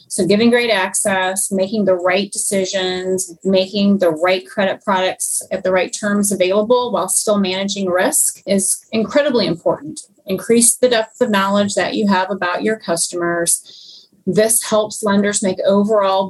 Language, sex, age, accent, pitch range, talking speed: English, female, 30-49, American, 185-210 Hz, 150 wpm